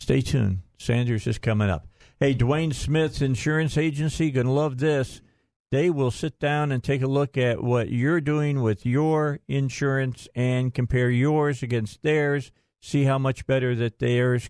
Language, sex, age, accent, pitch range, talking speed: English, male, 50-69, American, 115-145 Hz, 170 wpm